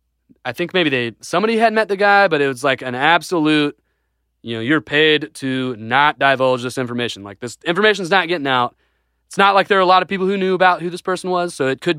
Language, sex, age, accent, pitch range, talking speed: English, male, 30-49, American, 120-170 Hz, 245 wpm